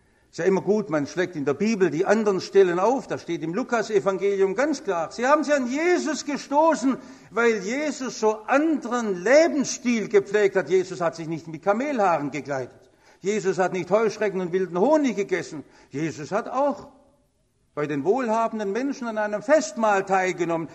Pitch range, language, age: 175-245 Hz, English, 60-79